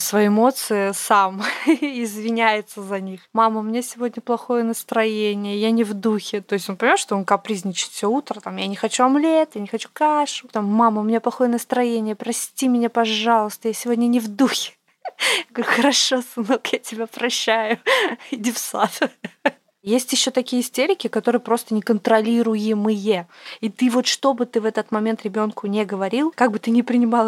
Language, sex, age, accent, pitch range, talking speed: Russian, female, 20-39, native, 205-245 Hz, 175 wpm